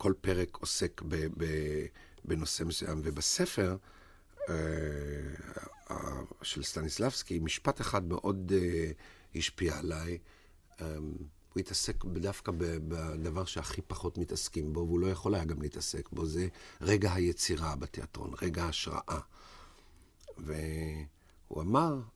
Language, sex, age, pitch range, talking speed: Hebrew, male, 50-69, 80-95 Hz, 115 wpm